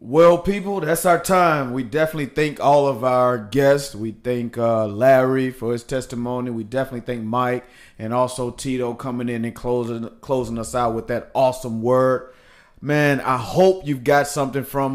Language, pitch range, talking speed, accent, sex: English, 115-135 Hz, 175 wpm, American, male